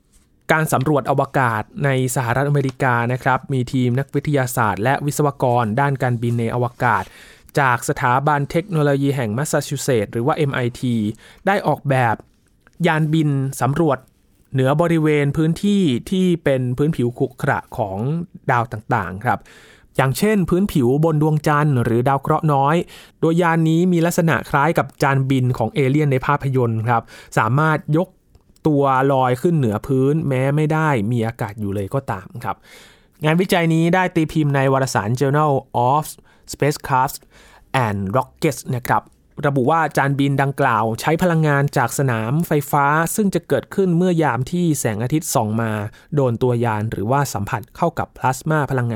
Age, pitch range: 20-39, 125-155 Hz